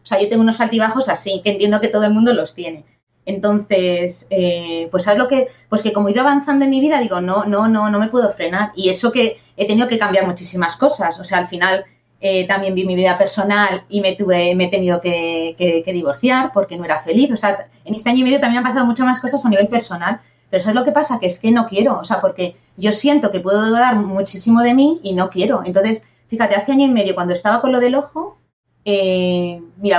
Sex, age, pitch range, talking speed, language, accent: female, 20-39, 185-240 Hz, 250 wpm, Spanish, Spanish